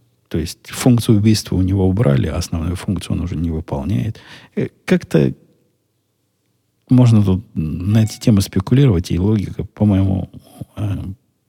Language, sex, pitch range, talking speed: Russian, male, 95-120 Hz, 125 wpm